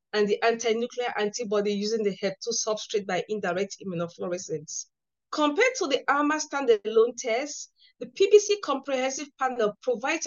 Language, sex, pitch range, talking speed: English, female, 225-290 Hz, 130 wpm